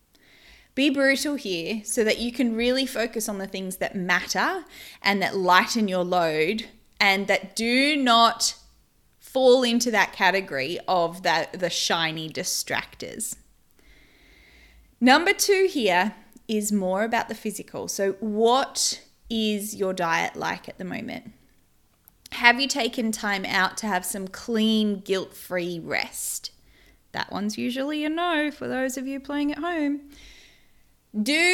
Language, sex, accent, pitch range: English, female, Australian, 195-265 Hz